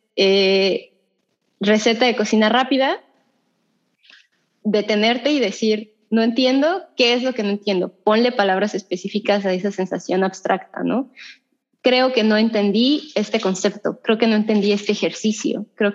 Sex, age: female, 20-39